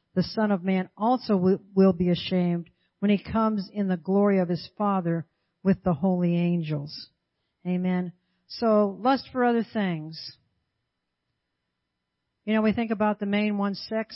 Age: 60-79